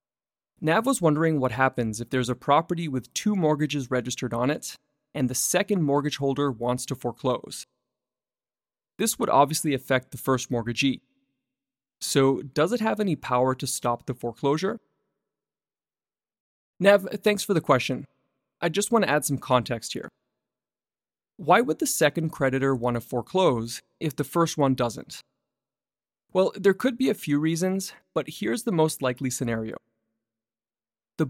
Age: 30-49